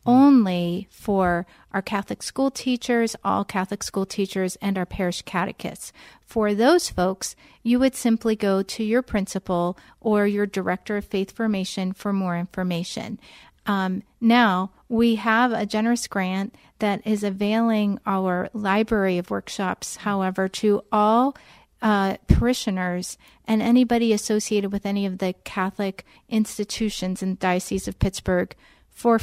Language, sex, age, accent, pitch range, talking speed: English, female, 40-59, American, 190-225 Hz, 140 wpm